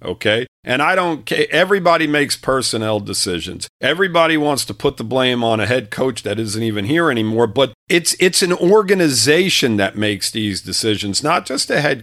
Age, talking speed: 50-69, 185 wpm